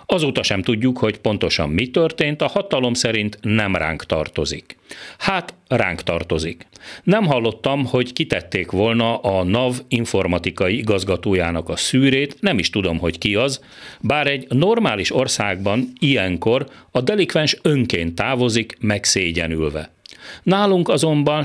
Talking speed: 125 wpm